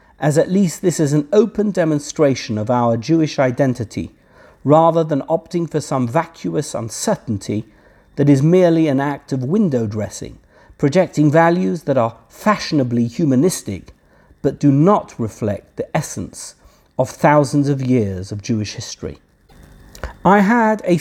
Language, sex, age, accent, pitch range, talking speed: English, male, 50-69, British, 125-180 Hz, 140 wpm